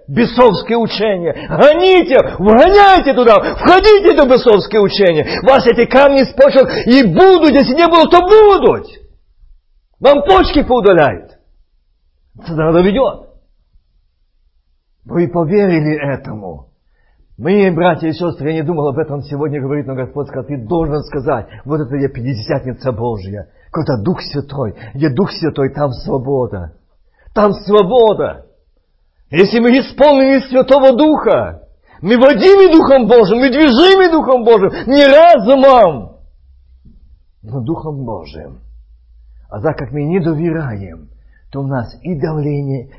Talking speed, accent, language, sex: 130 wpm, native, Russian, male